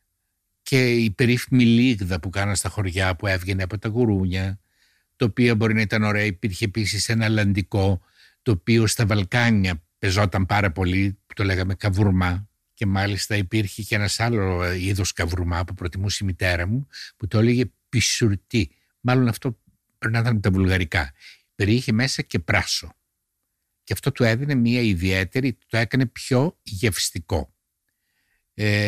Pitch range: 95-120 Hz